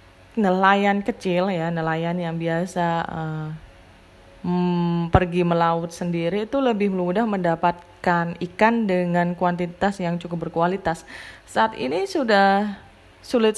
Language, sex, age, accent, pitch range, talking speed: Indonesian, female, 20-39, native, 170-225 Hz, 110 wpm